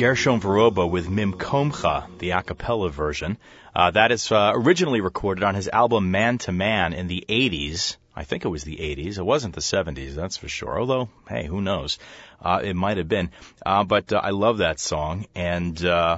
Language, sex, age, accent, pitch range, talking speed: English, male, 30-49, American, 90-120 Hz, 200 wpm